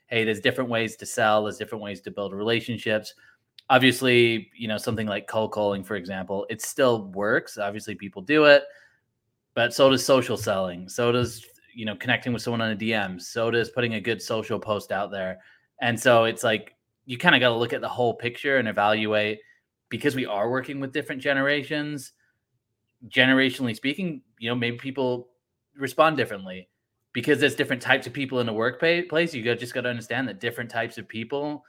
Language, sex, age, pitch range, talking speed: English, male, 30-49, 110-135 Hz, 195 wpm